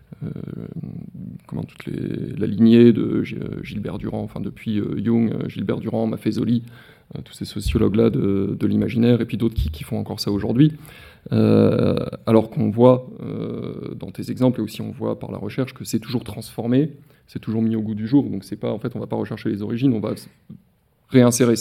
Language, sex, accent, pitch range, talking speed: French, male, French, 110-125 Hz, 200 wpm